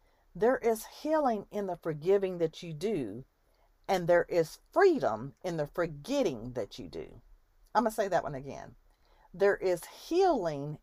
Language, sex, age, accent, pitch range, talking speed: English, female, 50-69, American, 165-275 Hz, 160 wpm